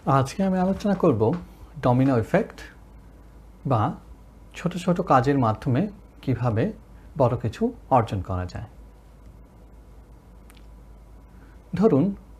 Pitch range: 115-165 Hz